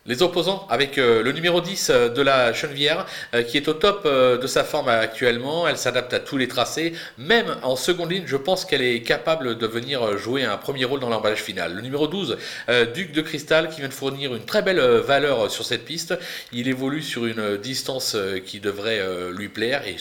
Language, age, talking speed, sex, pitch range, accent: French, 40-59, 205 wpm, male, 120-165 Hz, French